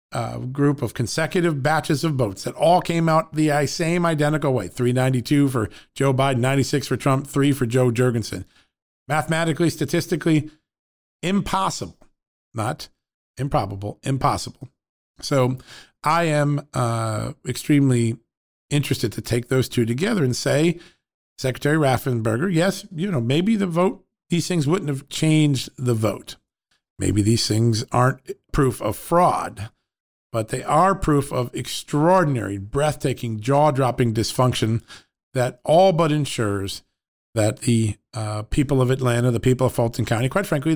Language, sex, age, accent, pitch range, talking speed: English, male, 50-69, American, 120-155 Hz, 135 wpm